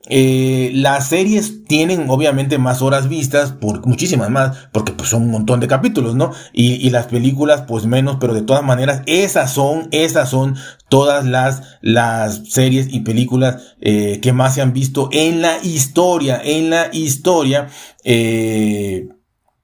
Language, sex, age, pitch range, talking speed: Spanish, male, 40-59, 115-140 Hz, 160 wpm